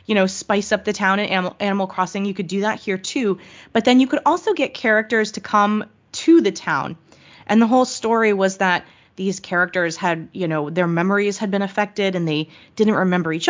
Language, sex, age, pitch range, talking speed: English, female, 20-39, 175-220 Hz, 215 wpm